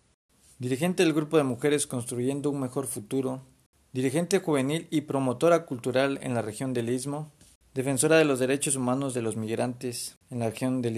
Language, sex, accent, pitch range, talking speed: Spanish, male, Mexican, 125-145 Hz, 170 wpm